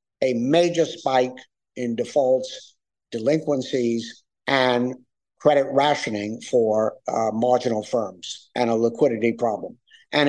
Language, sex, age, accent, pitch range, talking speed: English, male, 60-79, American, 120-150 Hz, 105 wpm